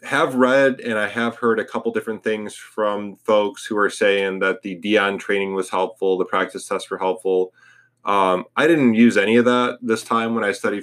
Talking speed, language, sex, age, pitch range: 210 wpm, English, male, 20-39, 90-110 Hz